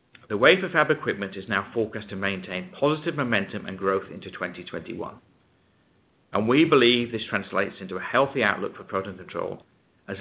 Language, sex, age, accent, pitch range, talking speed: English, male, 40-59, British, 100-125 Hz, 165 wpm